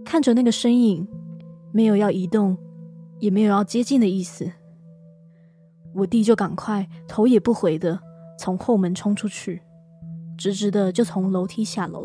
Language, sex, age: Chinese, female, 20-39